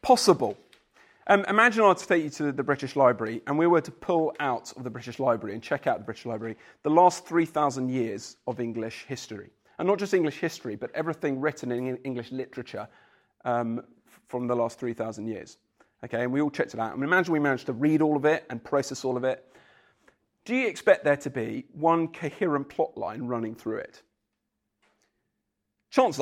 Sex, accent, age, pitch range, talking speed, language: male, British, 40-59, 130-185 Hz, 200 wpm, English